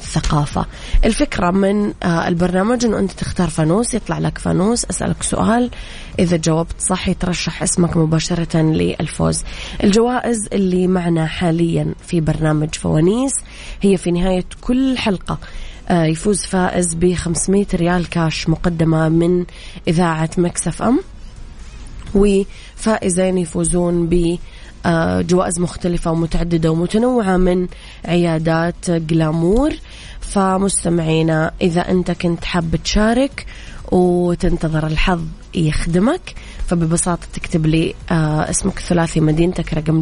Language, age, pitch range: Arabic, 20-39, 165-190 Hz